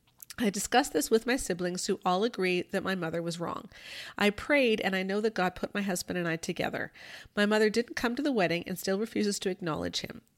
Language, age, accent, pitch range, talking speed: English, 40-59, American, 175-225 Hz, 230 wpm